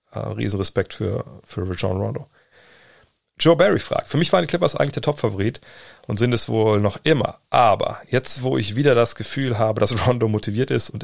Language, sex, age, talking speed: German, male, 40-59, 190 wpm